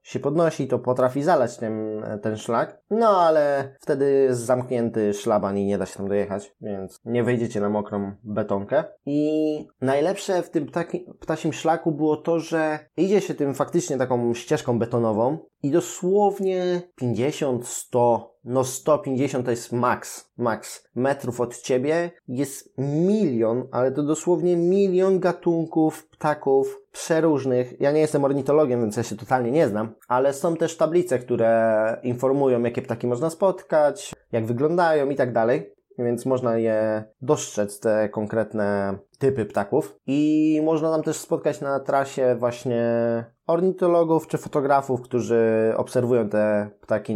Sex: male